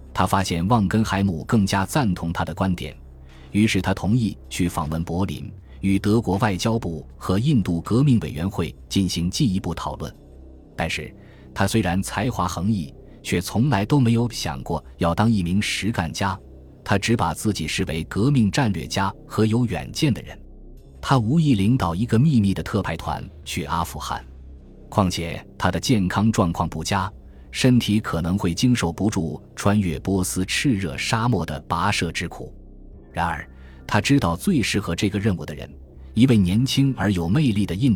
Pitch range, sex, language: 80-105 Hz, male, Chinese